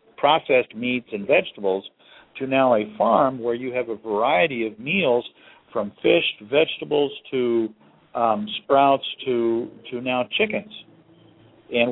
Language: English